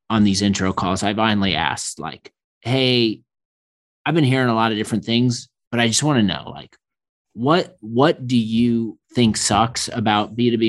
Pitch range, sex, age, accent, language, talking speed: 110-135 Hz, male, 30-49, American, English, 180 wpm